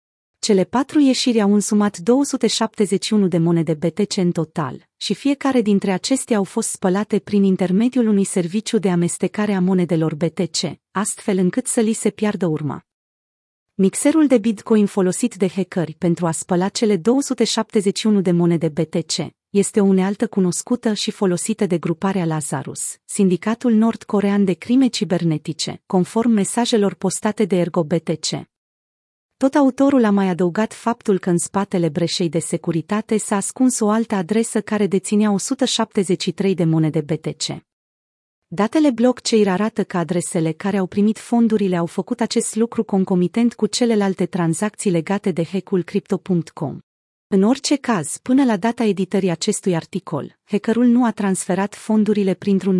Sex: female